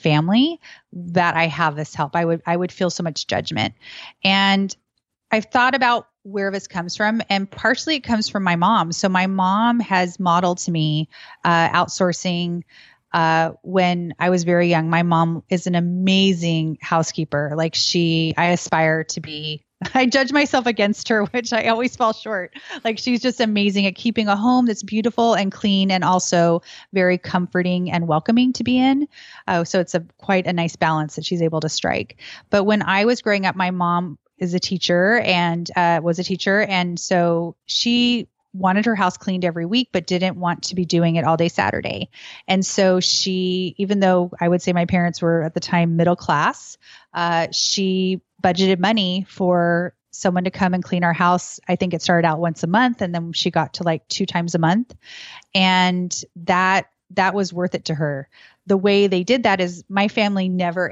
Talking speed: 195 wpm